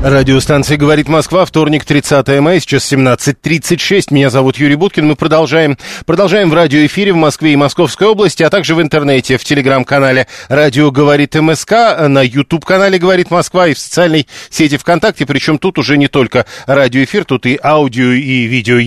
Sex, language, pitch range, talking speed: male, Russian, 135-170 Hz, 160 wpm